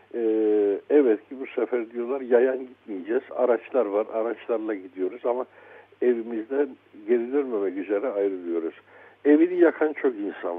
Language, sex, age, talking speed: Turkish, male, 60-79, 115 wpm